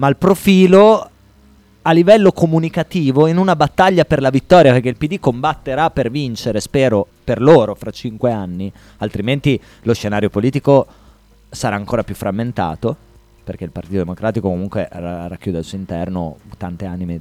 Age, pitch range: 20-39, 110-185 Hz